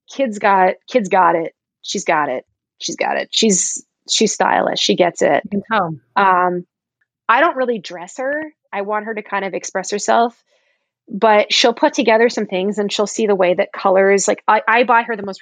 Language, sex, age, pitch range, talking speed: English, female, 20-39, 180-225 Hz, 200 wpm